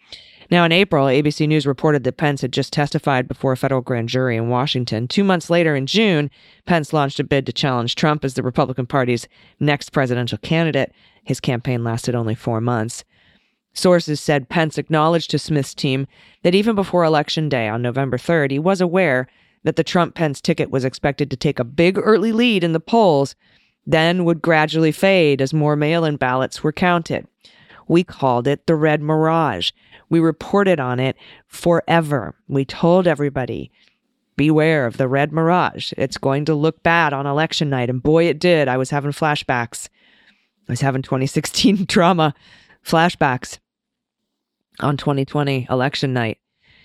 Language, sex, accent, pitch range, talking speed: English, female, American, 135-165 Hz, 170 wpm